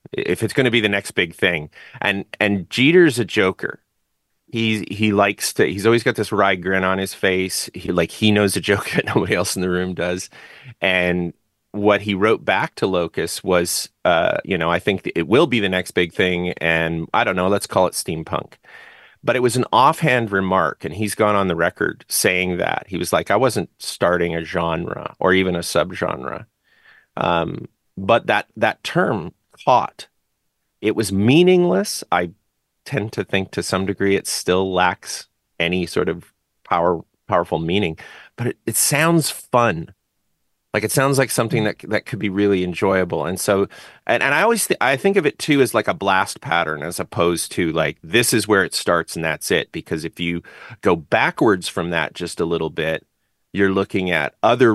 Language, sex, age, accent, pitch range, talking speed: English, male, 30-49, American, 85-110 Hz, 195 wpm